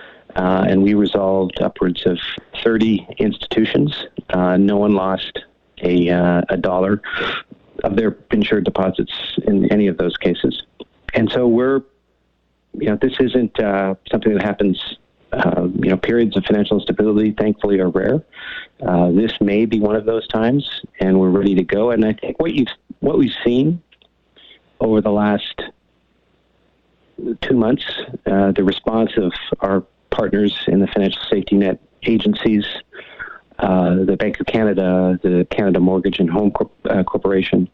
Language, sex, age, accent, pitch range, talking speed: English, male, 40-59, American, 95-110 Hz, 155 wpm